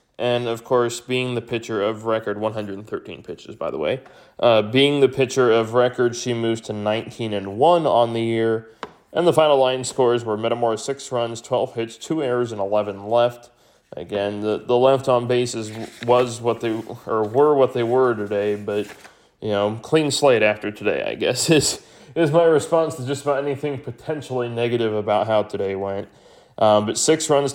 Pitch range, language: 105-125 Hz, English